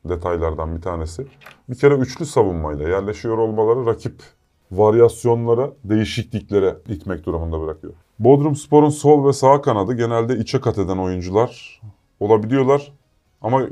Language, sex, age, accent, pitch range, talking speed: Turkish, male, 30-49, native, 90-120 Hz, 125 wpm